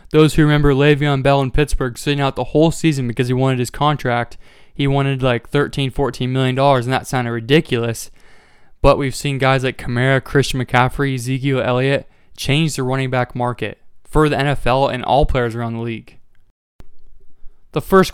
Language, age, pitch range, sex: English, 20-39, 125-145 Hz, male